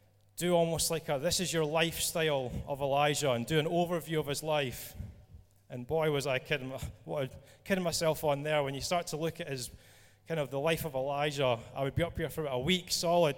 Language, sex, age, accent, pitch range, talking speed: English, male, 30-49, British, 120-170 Hz, 235 wpm